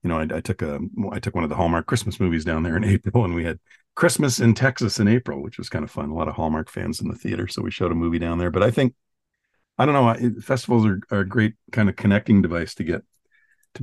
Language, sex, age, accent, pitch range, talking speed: English, male, 50-69, American, 85-110 Hz, 280 wpm